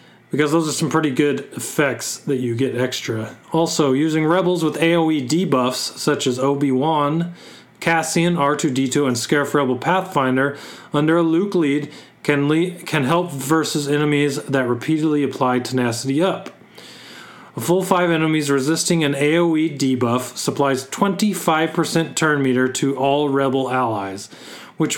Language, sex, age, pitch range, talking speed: English, male, 40-59, 130-165 Hz, 135 wpm